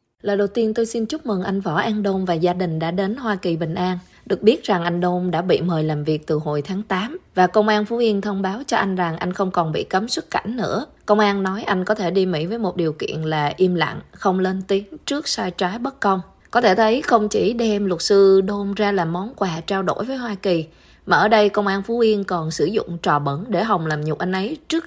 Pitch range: 155-205 Hz